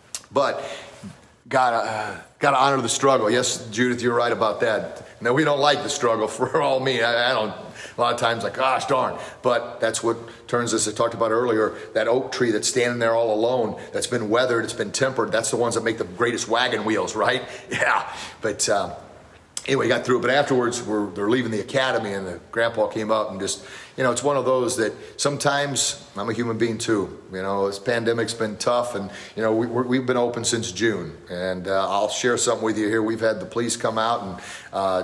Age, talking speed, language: 40-59, 220 wpm, English